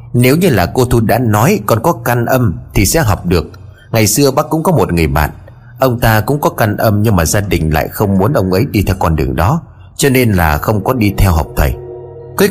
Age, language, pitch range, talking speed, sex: 30-49, Vietnamese, 95-120 Hz, 255 wpm, male